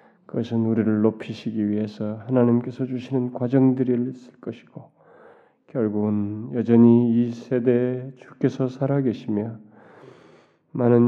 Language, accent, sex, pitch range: Korean, native, male, 115-135 Hz